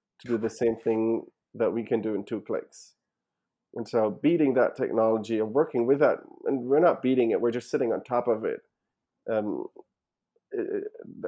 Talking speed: 190 wpm